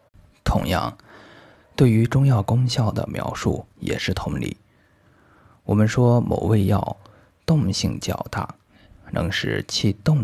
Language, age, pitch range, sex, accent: Chinese, 20-39, 100-120 Hz, male, native